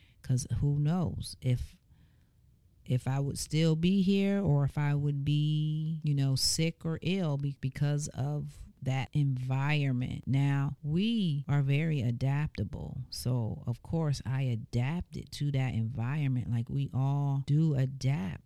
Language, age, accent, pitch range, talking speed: English, 40-59, American, 125-145 Hz, 135 wpm